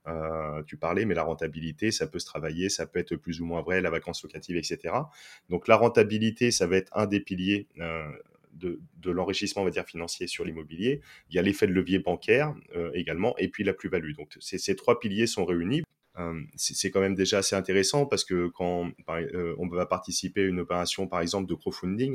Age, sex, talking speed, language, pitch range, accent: 30-49, male, 225 wpm, French, 85-100 Hz, French